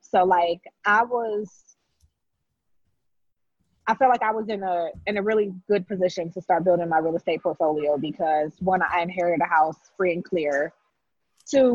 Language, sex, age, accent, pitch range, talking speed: English, female, 20-39, American, 170-225 Hz, 170 wpm